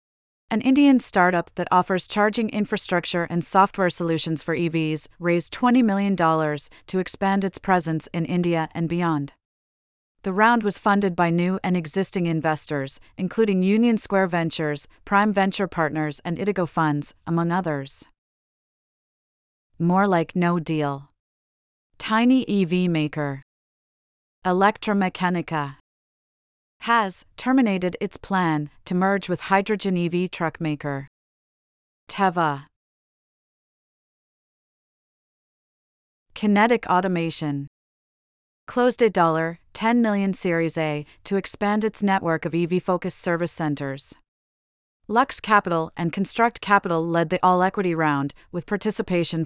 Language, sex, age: English, female, 30-49